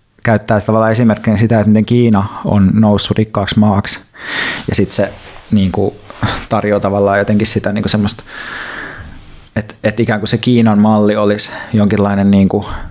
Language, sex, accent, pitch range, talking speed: Finnish, male, native, 105-115 Hz, 145 wpm